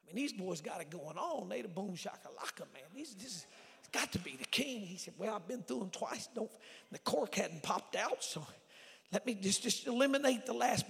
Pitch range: 175-215 Hz